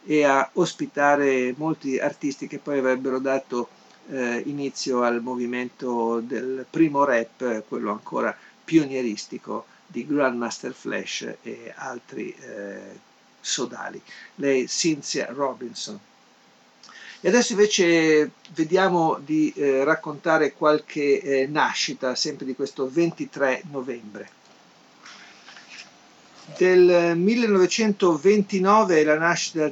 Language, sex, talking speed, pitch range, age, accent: Italian, male, 90 wpm, 125-150 Hz, 50-69, native